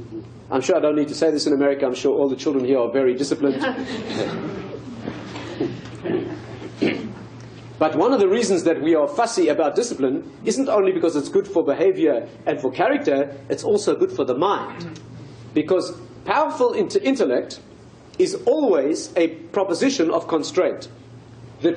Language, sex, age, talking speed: English, male, 50-69, 155 wpm